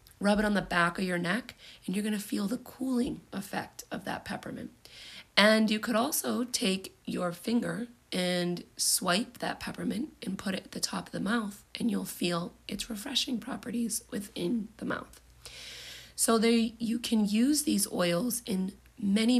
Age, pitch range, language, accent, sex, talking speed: 30-49, 180-235 Hz, English, American, female, 175 wpm